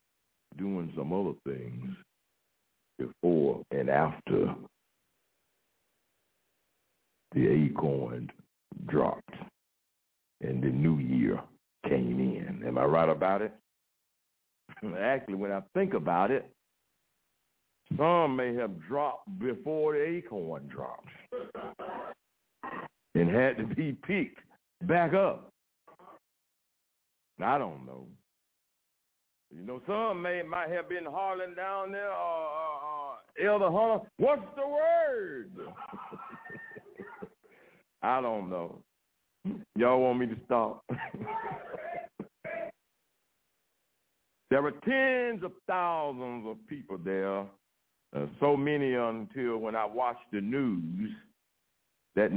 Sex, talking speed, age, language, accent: male, 100 wpm, 60-79, English, American